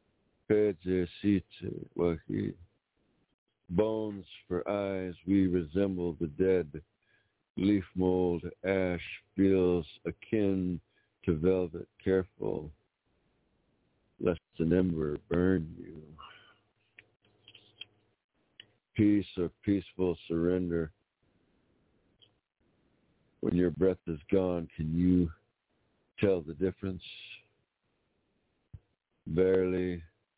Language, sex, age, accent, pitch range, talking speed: English, male, 60-79, American, 85-100 Hz, 70 wpm